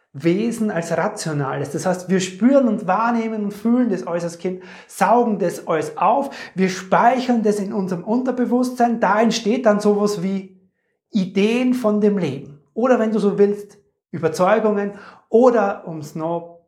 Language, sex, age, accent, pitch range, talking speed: German, male, 30-49, German, 180-230 Hz, 155 wpm